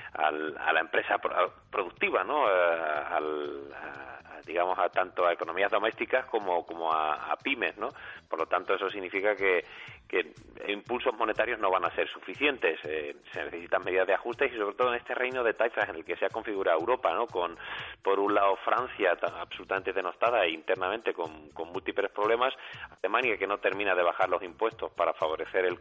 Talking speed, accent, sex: 190 wpm, Spanish, male